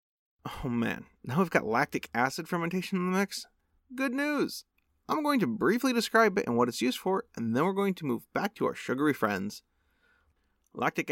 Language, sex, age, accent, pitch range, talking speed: English, male, 30-49, American, 120-190 Hz, 195 wpm